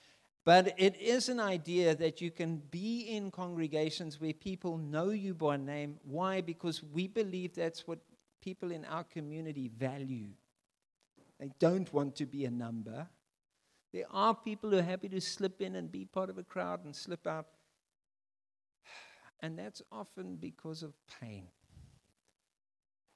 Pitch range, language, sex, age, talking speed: 120-185 Hz, English, male, 50-69, 155 wpm